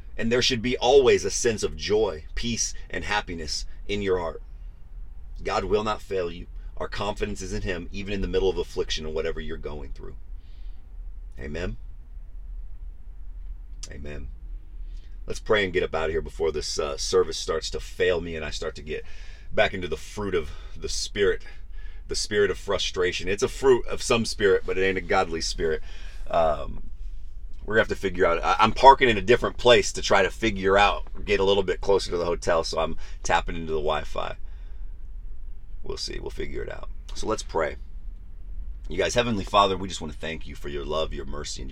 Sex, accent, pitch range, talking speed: male, American, 70-100 Hz, 195 wpm